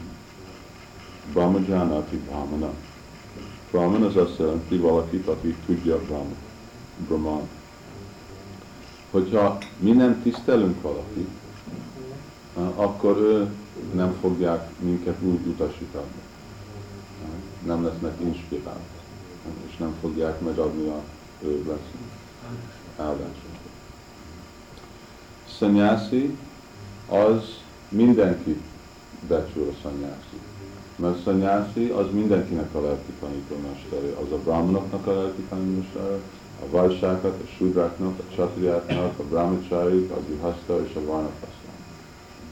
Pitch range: 85-105 Hz